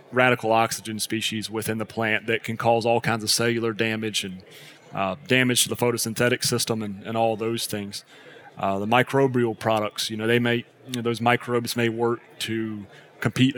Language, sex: English, male